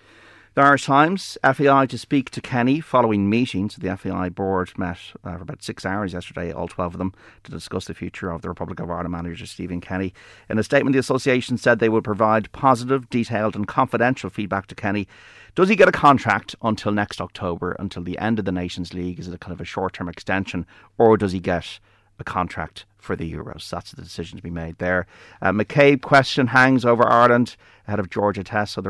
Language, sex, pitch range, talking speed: English, male, 90-110 Hz, 210 wpm